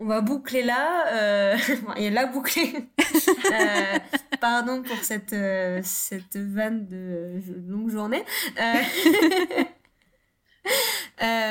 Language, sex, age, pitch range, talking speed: French, female, 20-39, 200-245 Hz, 125 wpm